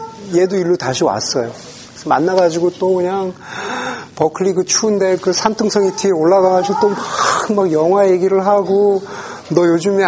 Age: 40-59